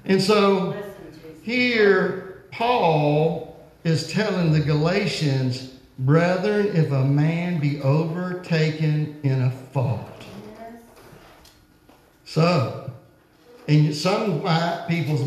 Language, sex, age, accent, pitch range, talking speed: English, male, 50-69, American, 130-180 Hz, 85 wpm